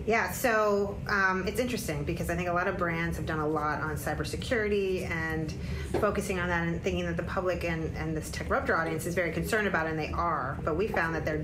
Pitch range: 155-185 Hz